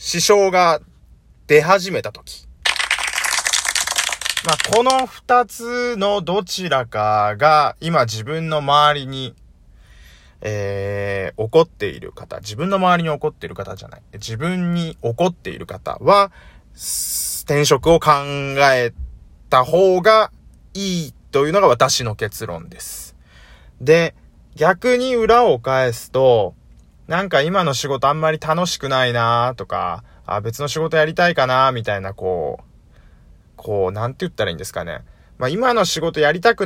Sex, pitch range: male, 100-170 Hz